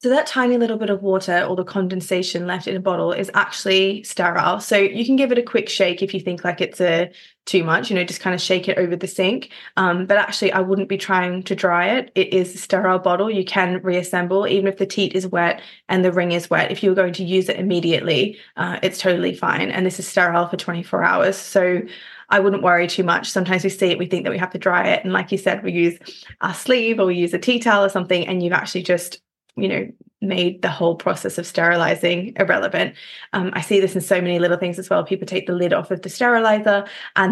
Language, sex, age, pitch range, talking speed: English, female, 20-39, 180-195 Hz, 250 wpm